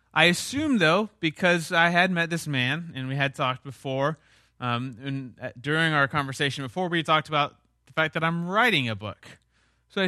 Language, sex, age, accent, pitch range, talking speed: English, male, 30-49, American, 125-165 Hz, 195 wpm